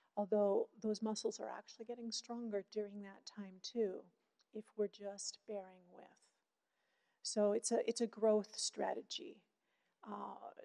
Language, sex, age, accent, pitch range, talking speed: English, female, 40-59, American, 205-235 Hz, 135 wpm